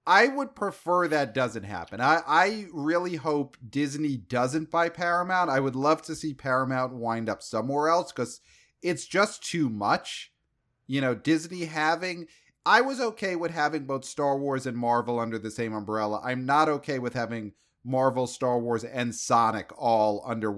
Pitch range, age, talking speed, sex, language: 115-160 Hz, 30-49, 170 wpm, male, English